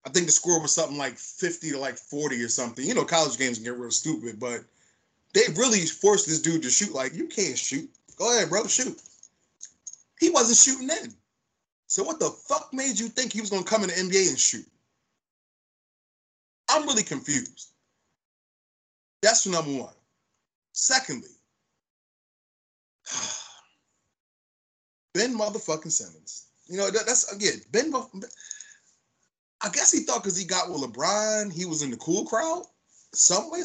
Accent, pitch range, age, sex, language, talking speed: American, 130-215 Hz, 20-39, male, English, 160 wpm